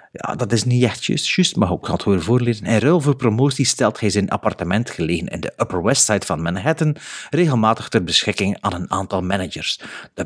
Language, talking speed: Dutch, 215 wpm